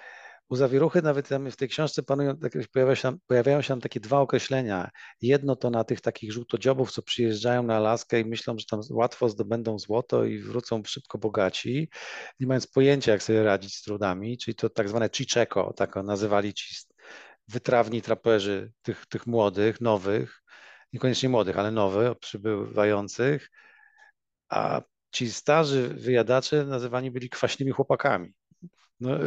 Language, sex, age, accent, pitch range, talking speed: Polish, male, 40-59, native, 115-135 Hz, 150 wpm